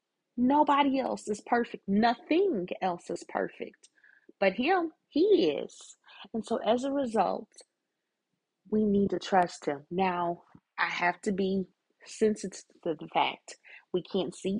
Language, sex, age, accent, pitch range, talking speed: English, female, 30-49, American, 175-235 Hz, 140 wpm